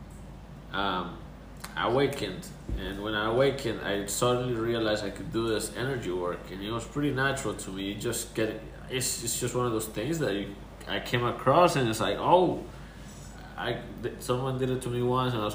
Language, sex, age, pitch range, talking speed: English, male, 20-39, 110-135 Hz, 205 wpm